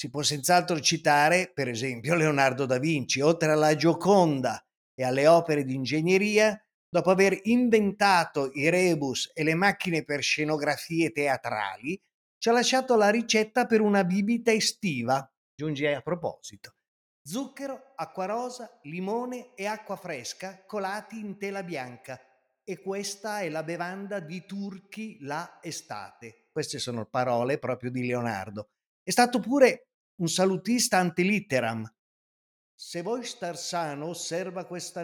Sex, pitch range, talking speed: male, 140-200 Hz, 135 wpm